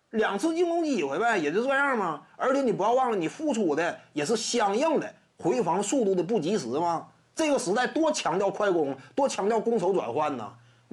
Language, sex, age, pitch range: Chinese, male, 30-49, 180-275 Hz